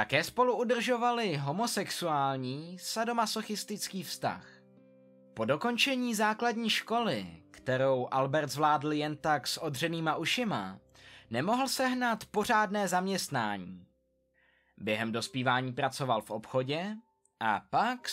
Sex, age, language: male, 20-39, Czech